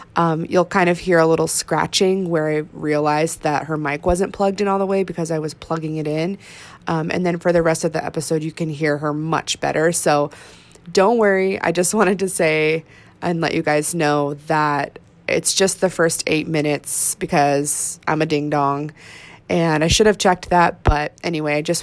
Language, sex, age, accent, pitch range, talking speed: English, female, 20-39, American, 150-175 Hz, 210 wpm